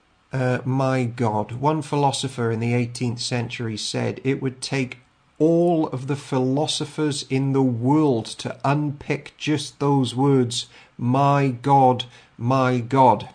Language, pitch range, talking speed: English, 125-155 Hz, 130 wpm